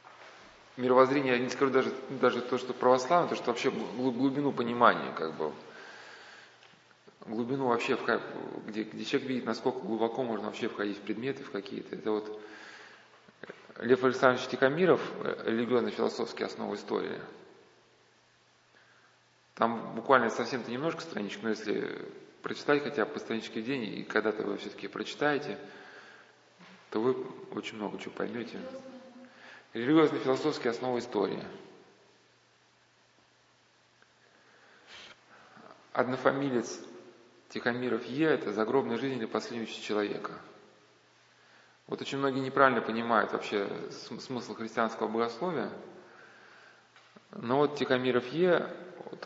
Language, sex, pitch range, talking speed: Russian, male, 115-145 Hz, 115 wpm